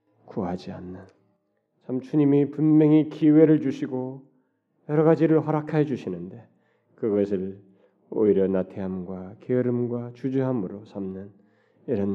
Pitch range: 100-150 Hz